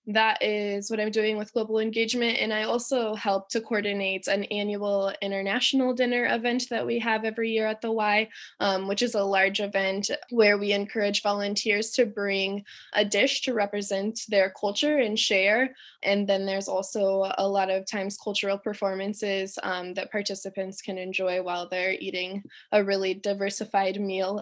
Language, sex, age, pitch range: English, female, 20-39, 195-220 Hz